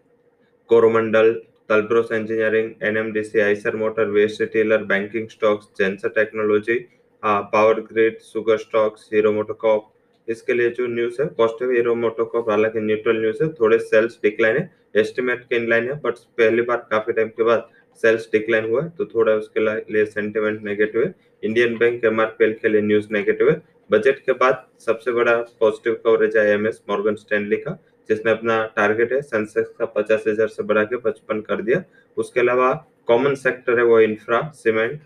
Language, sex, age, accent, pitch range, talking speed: English, male, 20-39, Indian, 110-155 Hz, 110 wpm